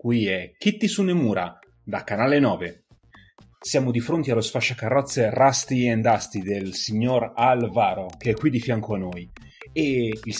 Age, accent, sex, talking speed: 30-49, native, male, 155 wpm